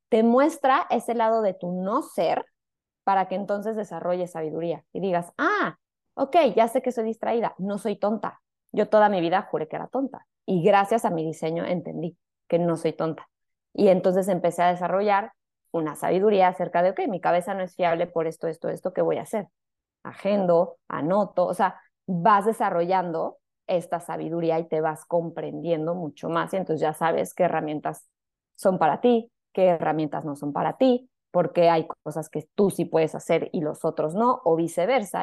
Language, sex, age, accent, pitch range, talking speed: Spanish, female, 20-39, Mexican, 170-220 Hz, 185 wpm